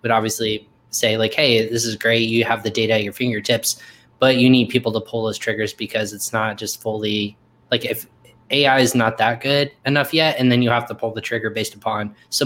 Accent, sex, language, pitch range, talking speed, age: American, male, English, 115-130 Hz, 230 wpm, 10-29